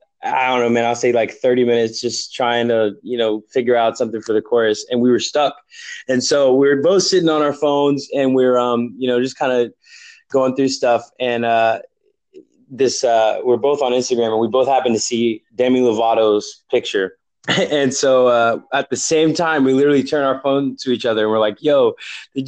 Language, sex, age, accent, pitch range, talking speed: English, male, 20-39, American, 120-150 Hz, 215 wpm